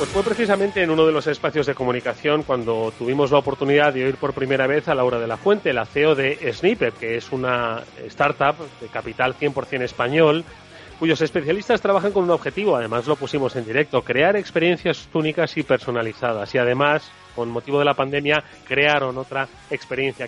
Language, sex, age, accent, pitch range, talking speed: Spanish, male, 30-49, Spanish, 125-160 Hz, 185 wpm